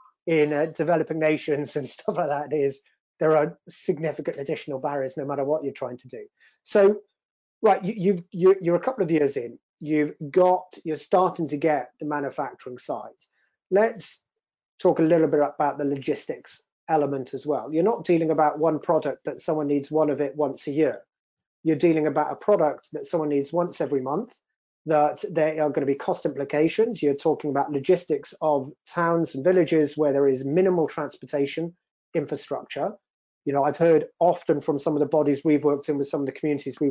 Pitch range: 145-170 Hz